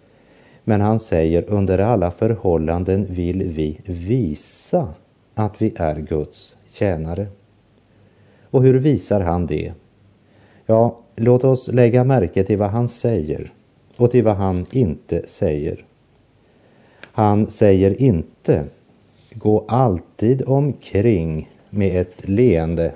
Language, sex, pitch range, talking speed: Polish, male, 90-115 Hz, 110 wpm